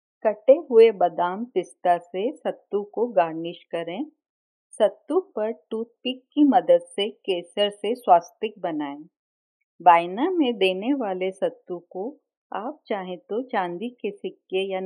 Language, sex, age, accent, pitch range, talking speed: Hindi, female, 40-59, native, 175-255 Hz, 130 wpm